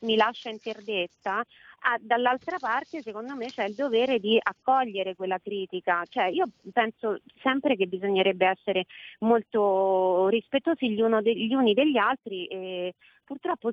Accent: native